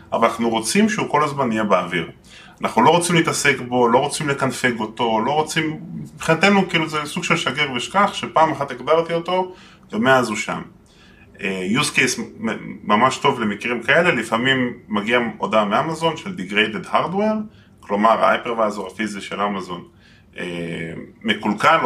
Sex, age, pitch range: male, 20-39, 105-165 Hz